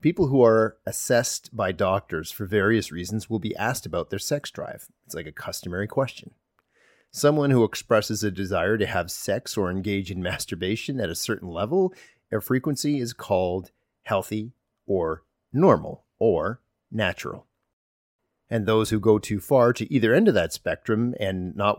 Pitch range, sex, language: 95-135 Hz, male, English